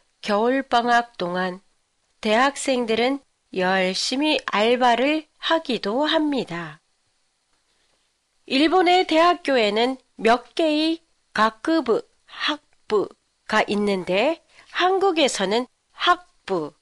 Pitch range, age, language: 215-310 Hz, 40-59, Japanese